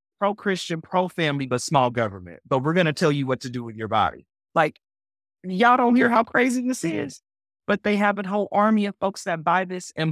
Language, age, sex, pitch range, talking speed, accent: English, 30-49, male, 120-190 Hz, 220 wpm, American